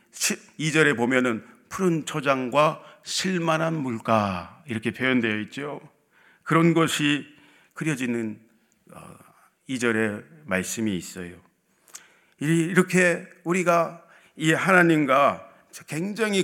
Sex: male